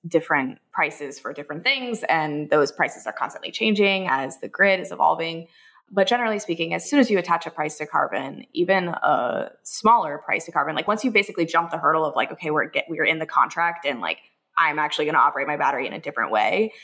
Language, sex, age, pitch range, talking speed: English, female, 20-39, 155-195 Hz, 225 wpm